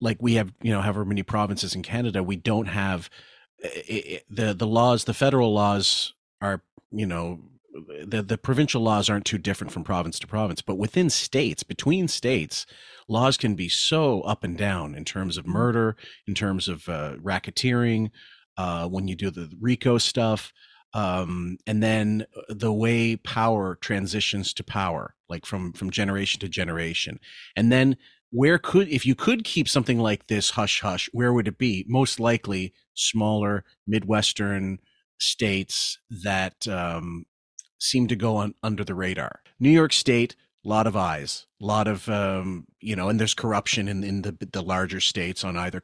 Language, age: English, 40-59